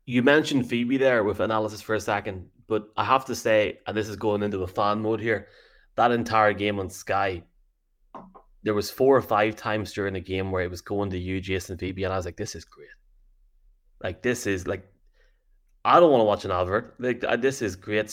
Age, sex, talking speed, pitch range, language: 20-39, male, 220 wpm, 95-115 Hz, English